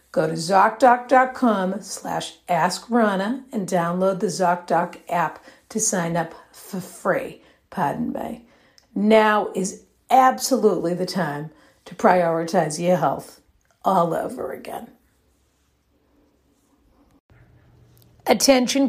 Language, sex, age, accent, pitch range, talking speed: English, female, 50-69, American, 190-255 Hz, 90 wpm